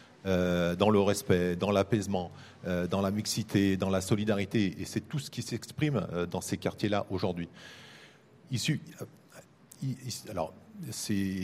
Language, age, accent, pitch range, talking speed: French, 40-59, French, 95-125 Hz, 150 wpm